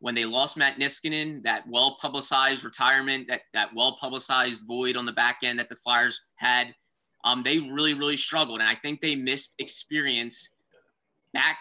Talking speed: 165 wpm